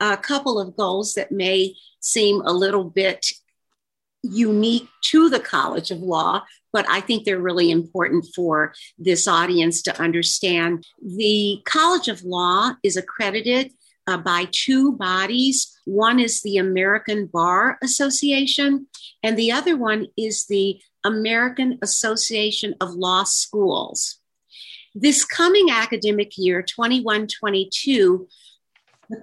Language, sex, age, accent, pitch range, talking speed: English, female, 50-69, American, 195-250 Hz, 125 wpm